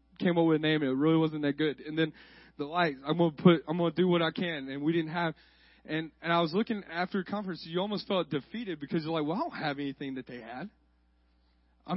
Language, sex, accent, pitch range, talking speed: English, male, American, 135-195 Hz, 270 wpm